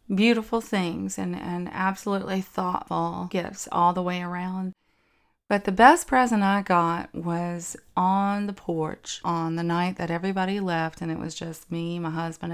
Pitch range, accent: 165-190 Hz, American